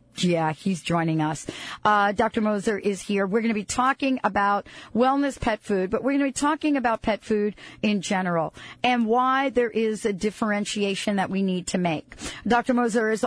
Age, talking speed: 50-69, 195 wpm